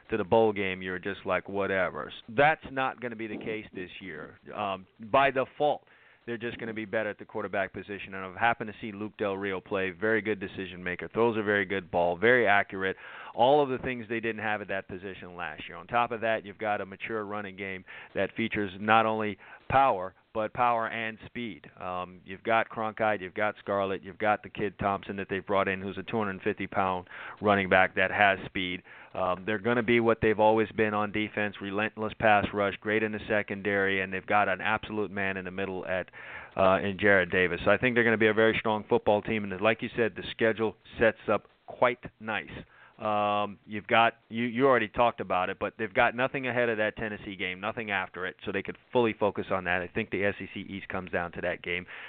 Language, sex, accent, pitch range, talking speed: English, male, American, 95-115 Hz, 230 wpm